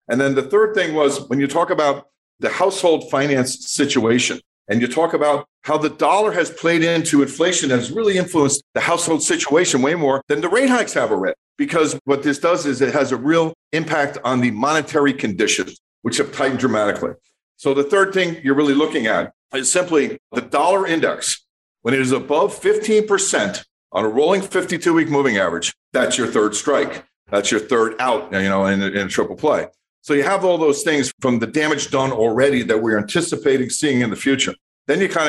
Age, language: 50-69, English